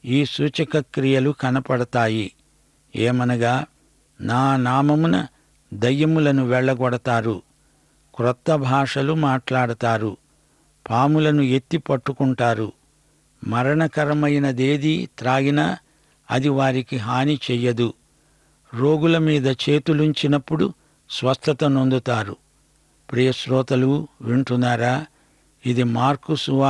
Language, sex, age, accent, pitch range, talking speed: English, male, 60-79, Indian, 125-150 Hz, 60 wpm